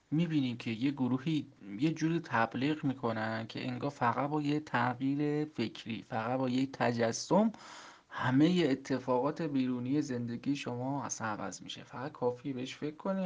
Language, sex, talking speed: Persian, male, 145 wpm